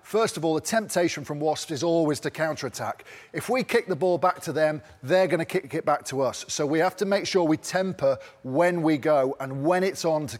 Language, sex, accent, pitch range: English, male, British, 145-180 Hz